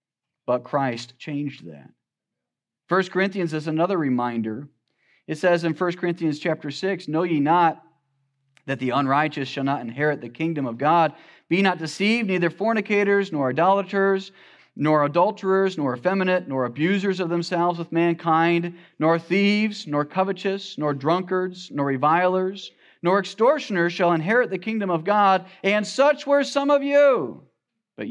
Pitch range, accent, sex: 140-190 Hz, American, male